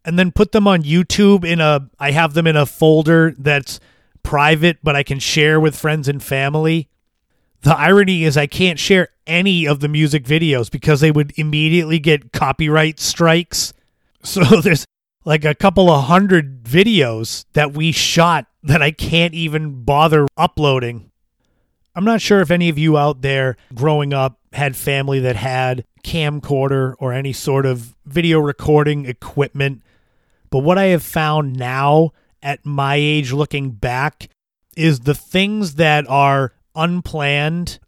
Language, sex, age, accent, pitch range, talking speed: English, male, 30-49, American, 135-165 Hz, 155 wpm